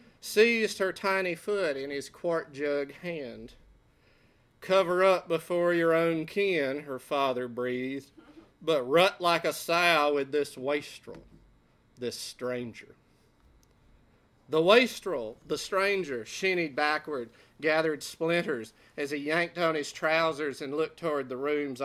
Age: 40-59